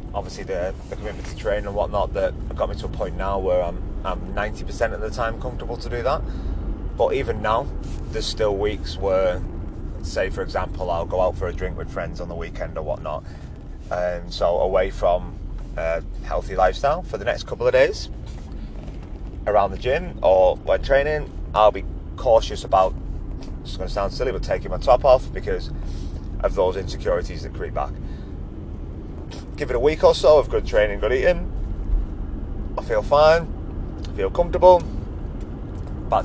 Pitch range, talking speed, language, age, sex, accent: 75-95 Hz, 175 wpm, English, 30-49, male, British